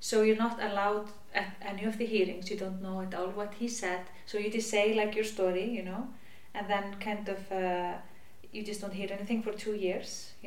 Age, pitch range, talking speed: 30-49, 185-215 Hz, 230 wpm